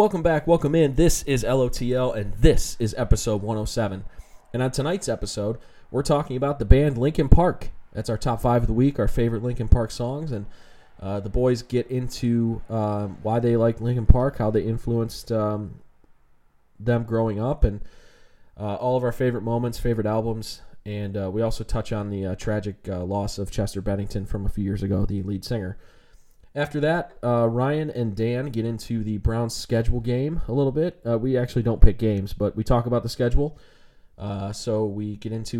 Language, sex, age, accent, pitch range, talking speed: English, male, 20-39, American, 105-120 Hz, 195 wpm